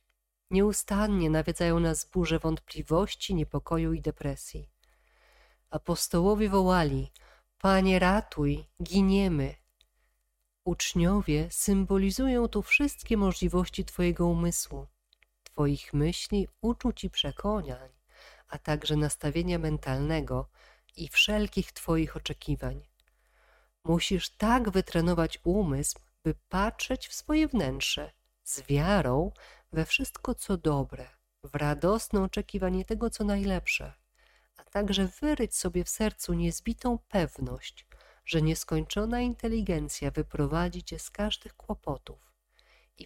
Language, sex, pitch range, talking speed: Polish, female, 150-200 Hz, 100 wpm